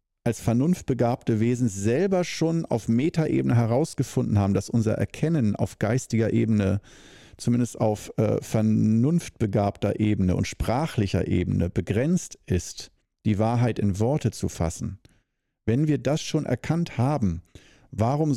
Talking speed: 125 wpm